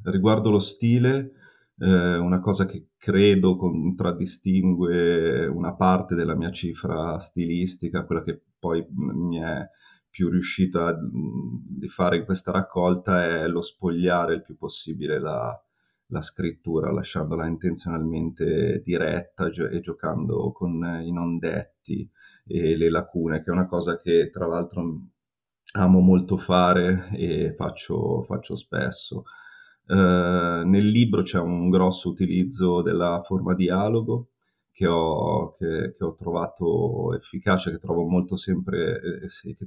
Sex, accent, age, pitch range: male, native, 30-49, 85-95 Hz